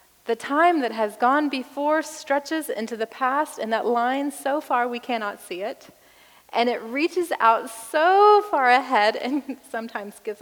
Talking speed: 165 wpm